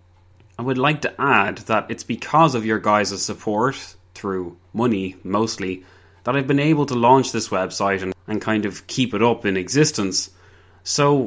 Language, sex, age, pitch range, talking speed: English, male, 20-39, 95-135 Hz, 175 wpm